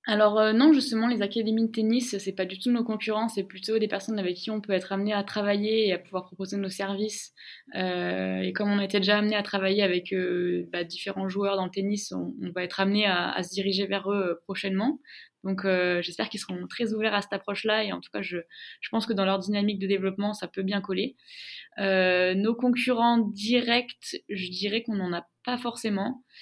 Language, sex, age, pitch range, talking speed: French, female, 20-39, 190-215 Hz, 225 wpm